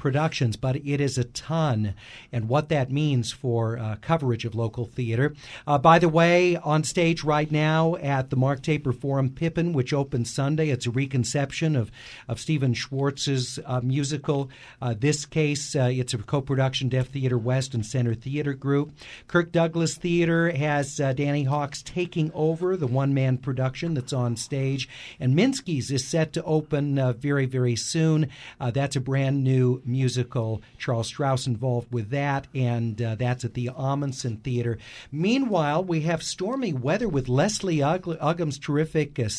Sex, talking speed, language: male, 170 wpm, English